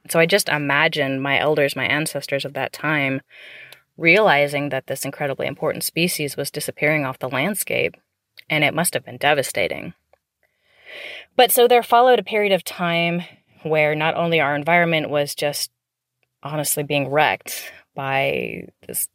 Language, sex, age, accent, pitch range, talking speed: English, female, 20-39, American, 135-165 Hz, 150 wpm